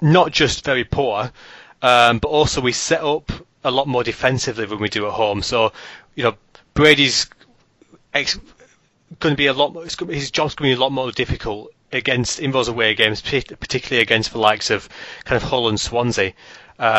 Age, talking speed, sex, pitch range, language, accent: 30-49, 190 wpm, male, 115-145 Hz, English, British